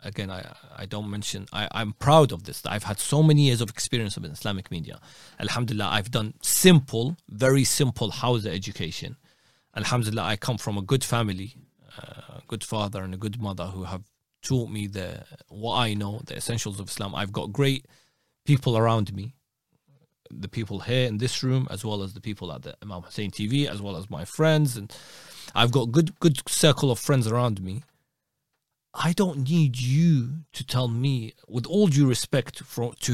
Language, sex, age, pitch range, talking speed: English, male, 30-49, 110-145 Hz, 190 wpm